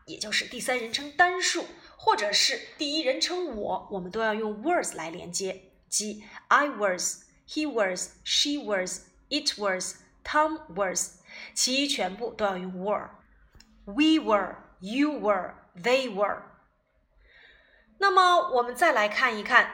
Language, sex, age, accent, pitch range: Chinese, female, 20-39, native, 200-295 Hz